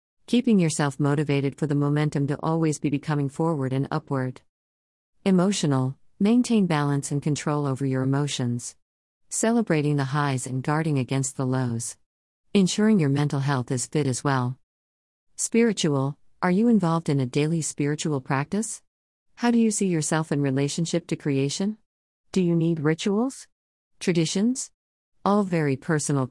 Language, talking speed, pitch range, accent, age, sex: English, 145 wpm, 135-165 Hz, American, 40-59, female